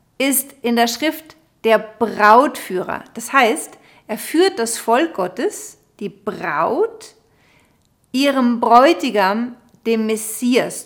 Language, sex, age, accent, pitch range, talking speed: German, female, 40-59, German, 205-260 Hz, 105 wpm